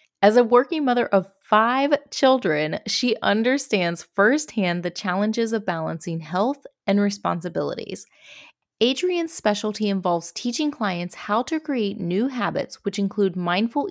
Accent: American